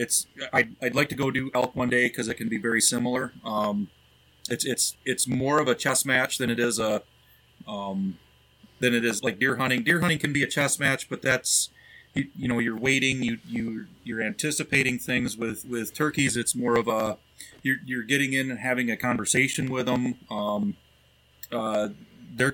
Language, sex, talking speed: English, male, 200 wpm